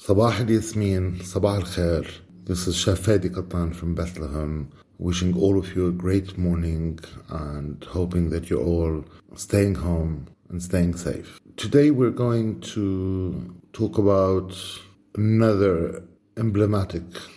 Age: 50-69